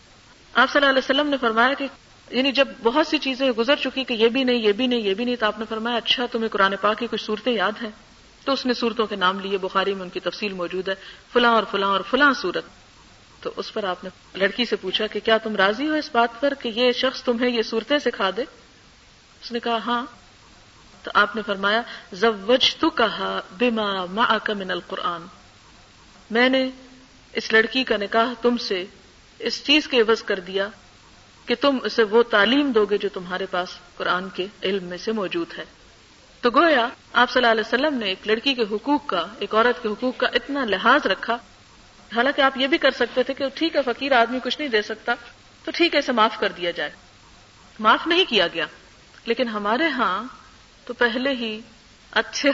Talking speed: 210 wpm